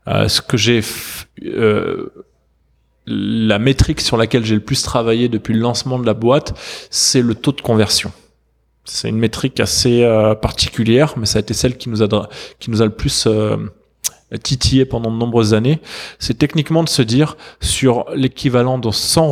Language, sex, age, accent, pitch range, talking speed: French, male, 20-39, French, 110-135 Hz, 180 wpm